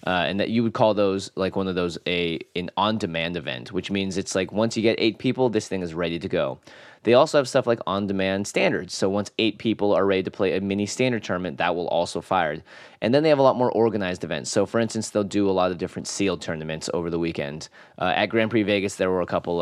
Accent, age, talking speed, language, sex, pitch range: American, 20-39, 265 wpm, English, male, 90-110 Hz